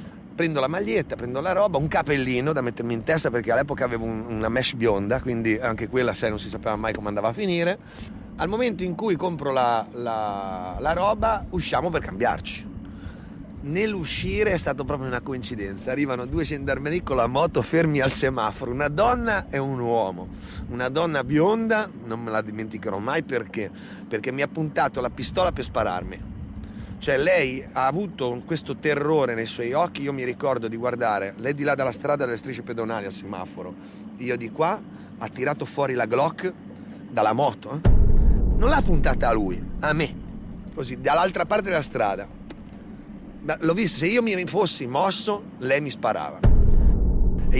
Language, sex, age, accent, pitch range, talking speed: Italian, male, 30-49, native, 115-165 Hz, 175 wpm